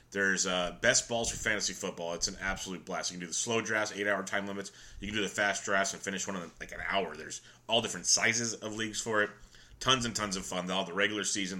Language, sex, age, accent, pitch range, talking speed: English, male, 30-49, American, 95-110 Hz, 265 wpm